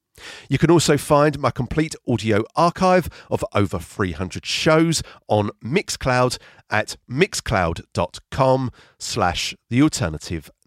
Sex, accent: male, British